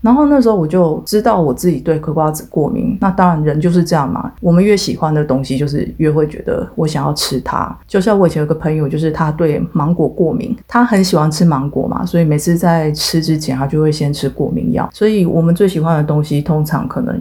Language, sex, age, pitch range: Chinese, female, 30-49, 150-180 Hz